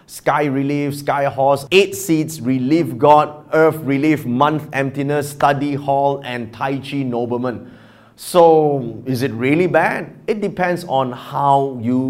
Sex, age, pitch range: male, 30-49, 120-160 Hz